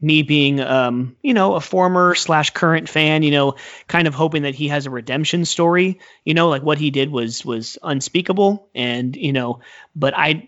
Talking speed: 200 wpm